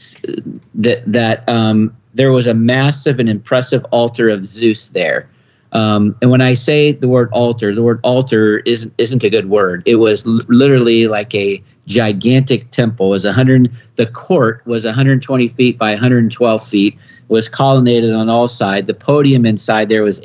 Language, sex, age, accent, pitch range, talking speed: English, male, 50-69, American, 110-125 Hz, 170 wpm